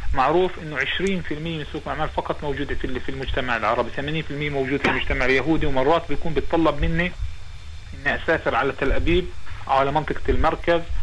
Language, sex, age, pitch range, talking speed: Hebrew, male, 40-59, 130-170 Hz, 160 wpm